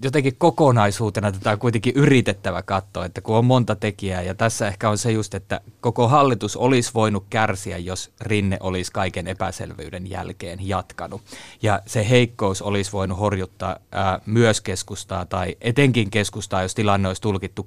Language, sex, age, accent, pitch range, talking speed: Finnish, male, 20-39, native, 95-115 Hz, 160 wpm